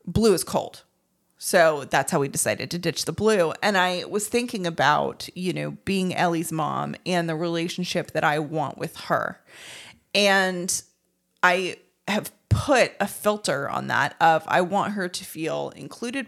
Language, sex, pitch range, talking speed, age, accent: English, female, 170-210 Hz, 165 wpm, 30-49, American